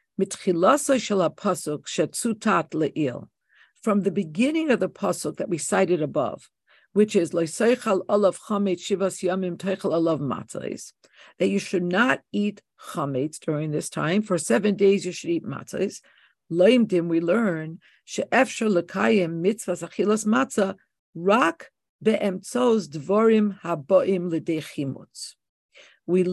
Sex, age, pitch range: female, 50-69, 175-225 Hz